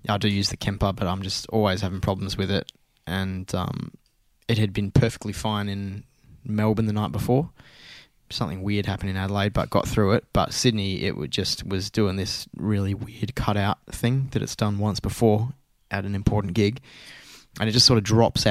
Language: English